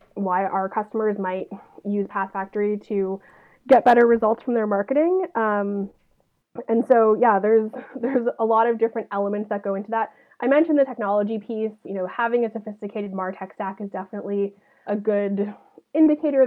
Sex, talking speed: female, 165 wpm